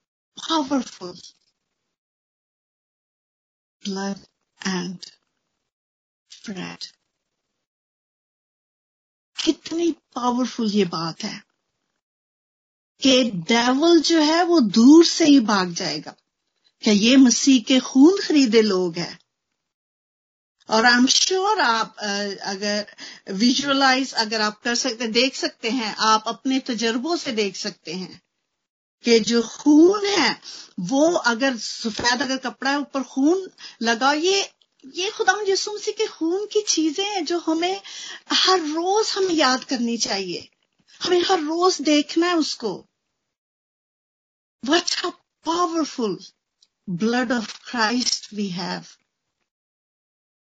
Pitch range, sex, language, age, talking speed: 225-325 Hz, female, Hindi, 50-69, 105 wpm